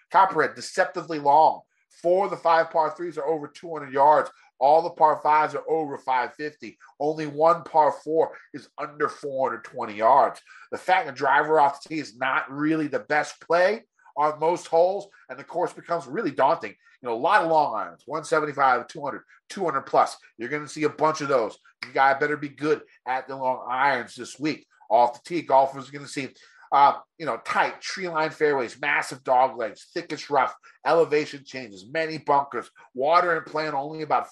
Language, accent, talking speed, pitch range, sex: English, American, 190 wpm, 140-175 Hz, male